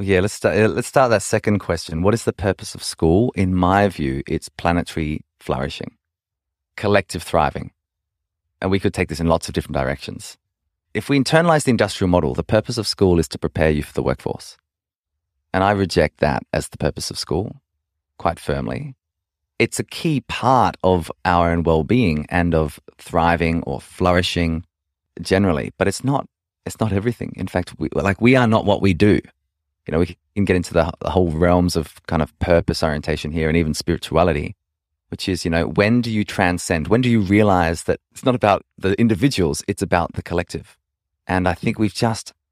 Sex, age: male, 30-49